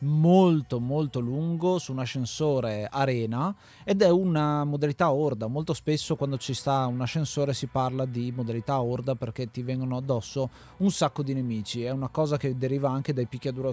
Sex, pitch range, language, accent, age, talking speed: male, 130-160 Hz, Italian, native, 30-49, 175 wpm